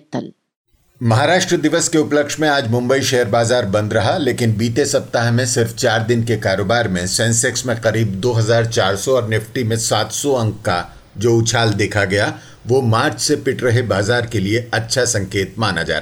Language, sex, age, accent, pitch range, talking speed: Hindi, male, 50-69, native, 110-140 Hz, 175 wpm